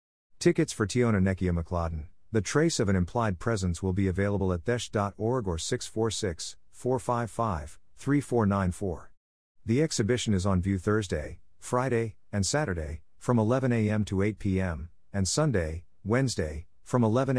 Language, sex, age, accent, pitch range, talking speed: English, male, 50-69, American, 90-115 Hz, 130 wpm